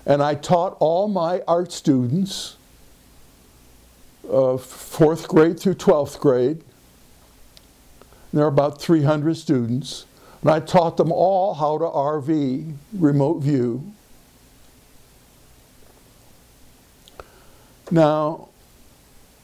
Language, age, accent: English, 60-79, American